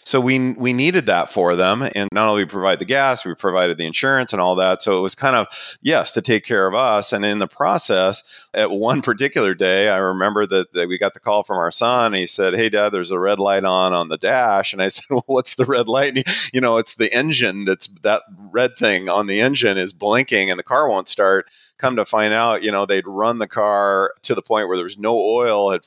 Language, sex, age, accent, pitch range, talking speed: English, male, 30-49, American, 100-120 Hz, 260 wpm